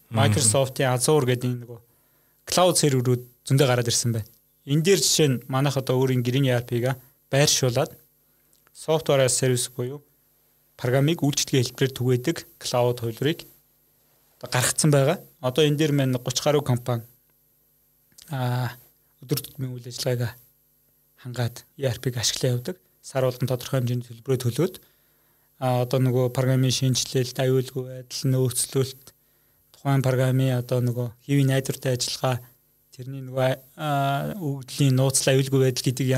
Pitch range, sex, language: 125-145 Hz, male, Russian